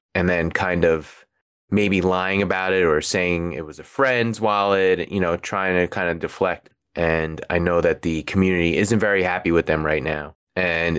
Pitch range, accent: 85-95 Hz, American